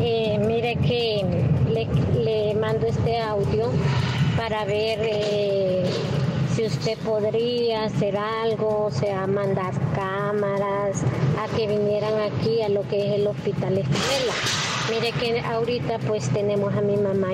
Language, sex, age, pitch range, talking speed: Spanish, female, 30-49, 145-205 Hz, 135 wpm